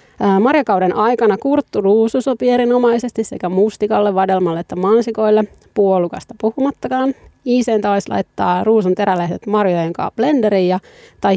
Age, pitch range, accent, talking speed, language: 30-49, 180-225 Hz, native, 110 wpm, Finnish